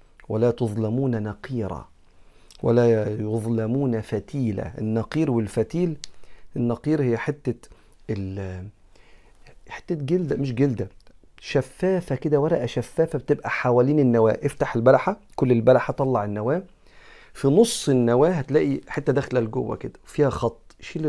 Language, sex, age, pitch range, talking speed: Arabic, male, 40-59, 115-155 Hz, 110 wpm